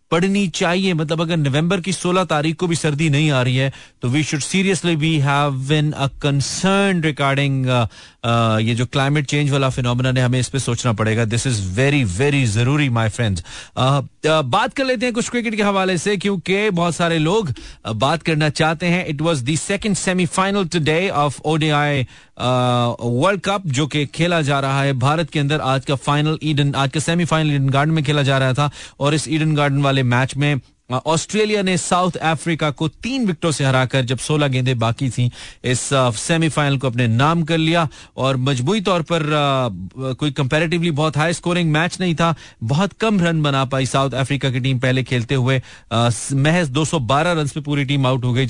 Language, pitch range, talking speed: Hindi, 130-165 Hz, 195 wpm